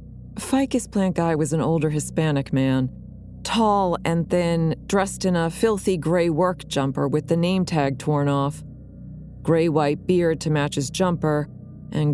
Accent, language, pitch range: American, English, 145-175 Hz